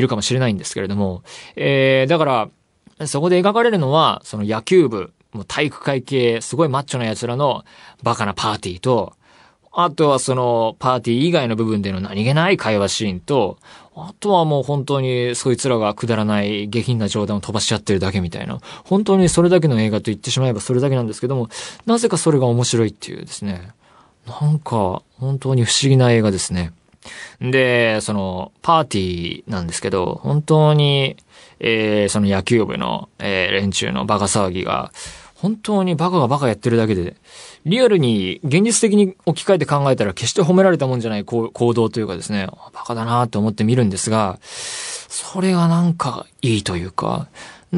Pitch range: 105-160 Hz